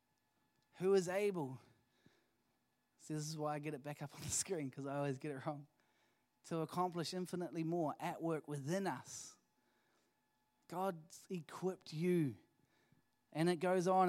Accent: Australian